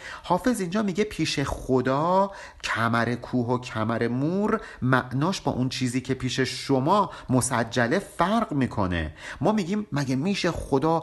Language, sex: Persian, male